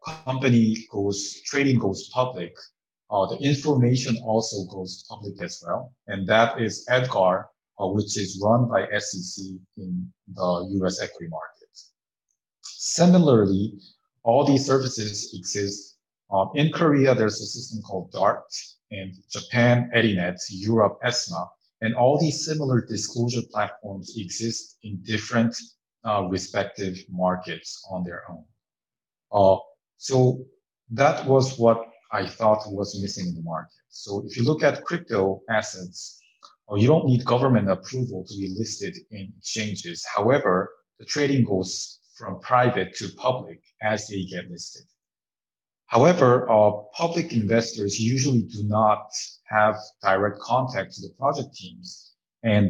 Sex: male